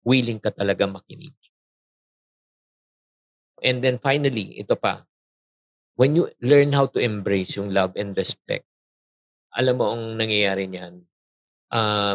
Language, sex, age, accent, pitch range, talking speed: Filipino, male, 50-69, native, 105-135 Hz, 125 wpm